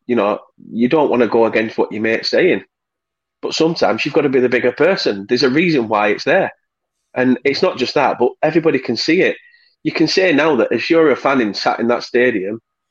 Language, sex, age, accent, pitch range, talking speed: English, male, 30-49, British, 115-160 Hz, 235 wpm